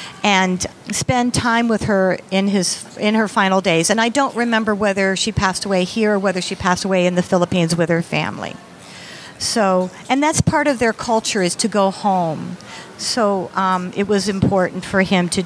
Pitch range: 185-235 Hz